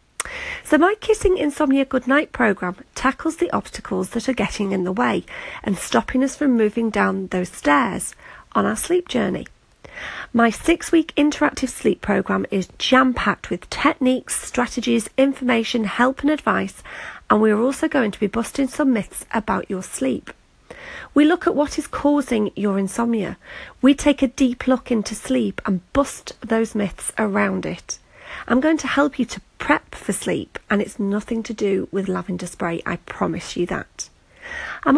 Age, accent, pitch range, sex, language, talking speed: 40-59, British, 205-280 Hz, female, English, 165 wpm